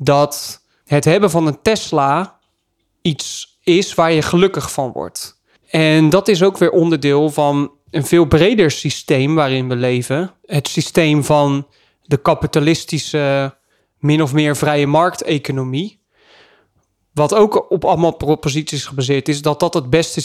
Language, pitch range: Dutch, 145-175 Hz